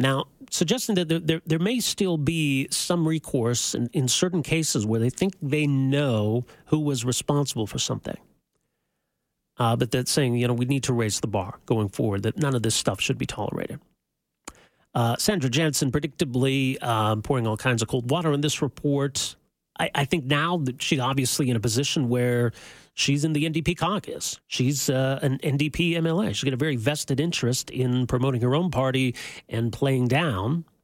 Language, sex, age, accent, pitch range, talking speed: English, male, 40-59, American, 120-155 Hz, 185 wpm